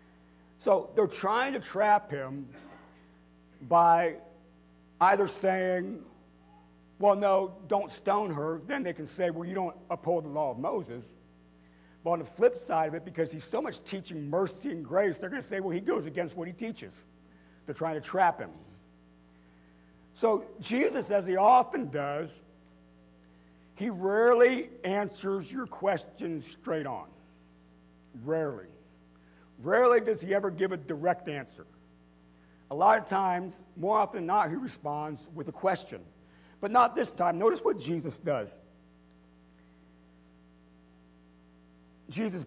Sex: male